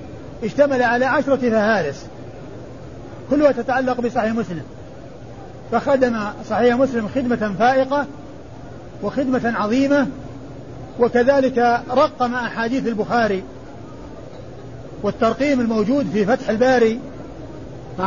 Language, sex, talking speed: Arabic, male, 85 wpm